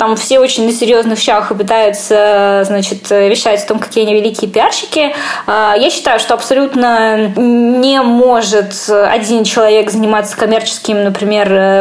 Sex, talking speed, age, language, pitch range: female, 130 wpm, 20-39, Russian, 210-250 Hz